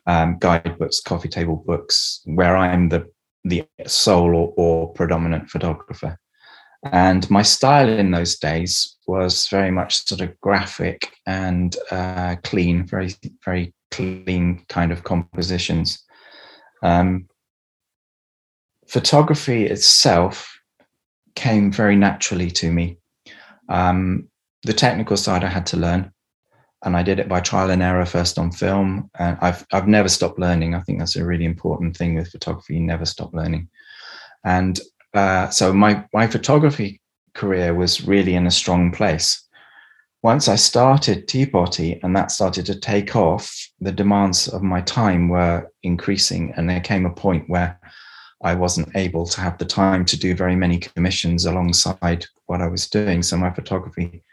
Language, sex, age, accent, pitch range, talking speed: English, male, 20-39, British, 85-95 Hz, 150 wpm